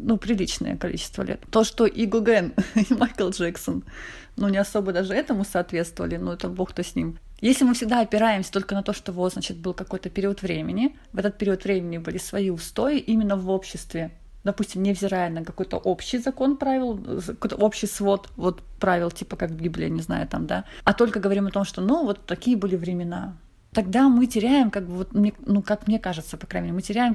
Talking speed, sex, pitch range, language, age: 205 wpm, female, 185-230 Hz, Russian, 30-49